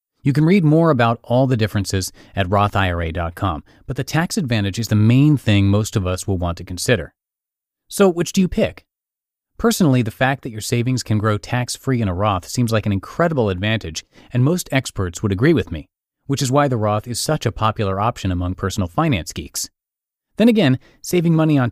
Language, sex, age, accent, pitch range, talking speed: English, male, 30-49, American, 100-140 Hz, 200 wpm